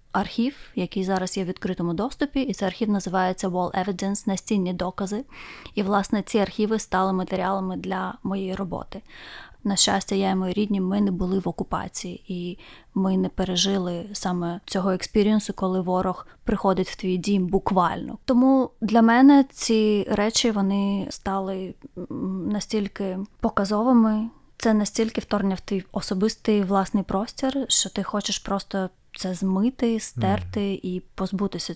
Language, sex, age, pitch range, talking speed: Ukrainian, female, 20-39, 185-215 Hz, 140 wpm